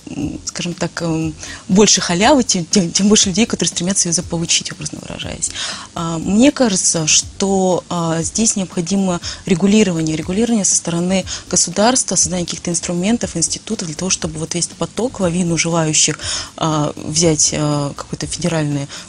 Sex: female